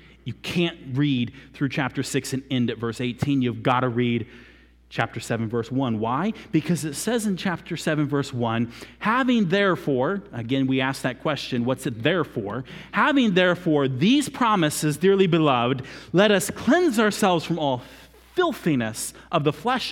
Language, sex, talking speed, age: English, male, 165 wpm, 30-49